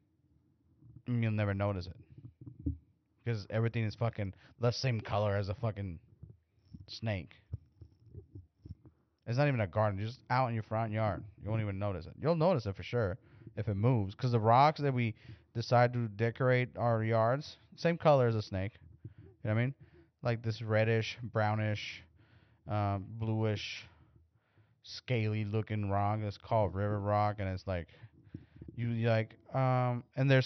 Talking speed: 160 wpm